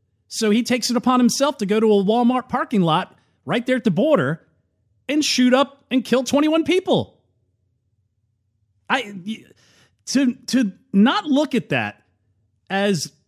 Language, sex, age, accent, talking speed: English, male, 40-59, American, 150 wpm